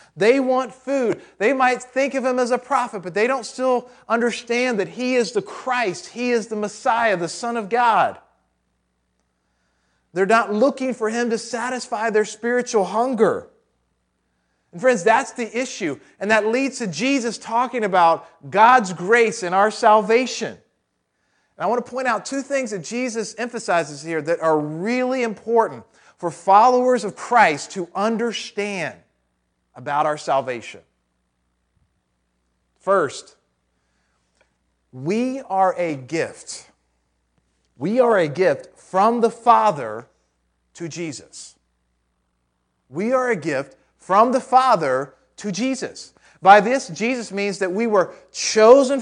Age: 40-59